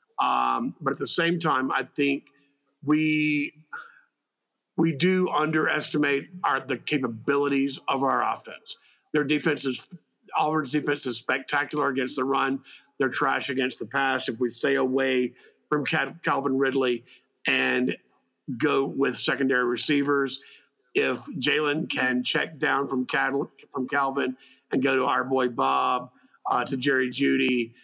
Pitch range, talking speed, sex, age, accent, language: 130-155 Hz, 135 wpm, male, 50-69, American, English